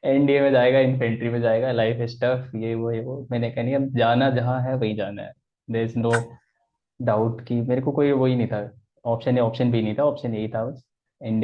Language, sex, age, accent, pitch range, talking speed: Hindi, male, 20-39, native, 115-140 Hz, 210 wpm